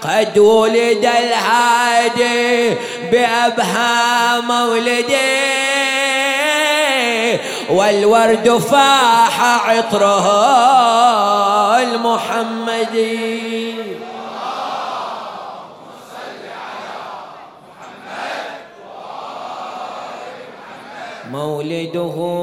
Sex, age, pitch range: male, 30-49, 175-235 Hz